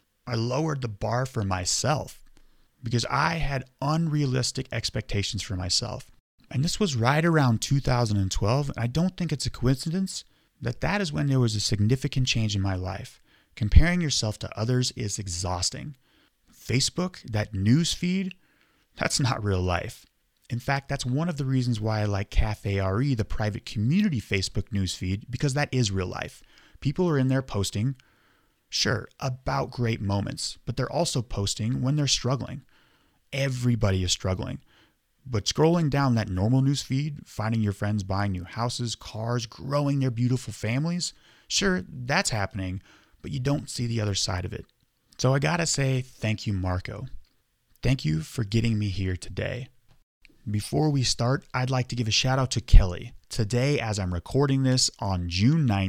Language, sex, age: English, male, 30-49